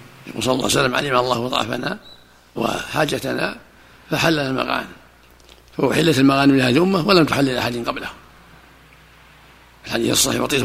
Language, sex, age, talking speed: Arabic, male, 60-79, 120 wpm